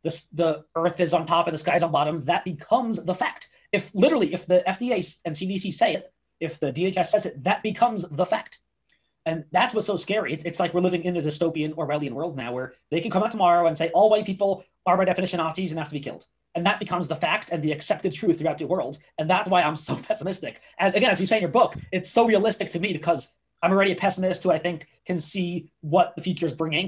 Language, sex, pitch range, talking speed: English, male, 160-190 Hz, 255 wpm